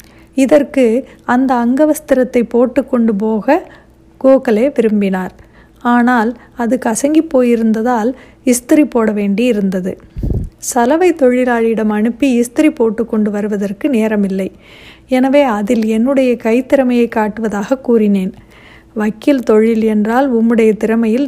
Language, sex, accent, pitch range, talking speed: Tamil, female, native, 220-260 Hz, 100 wpm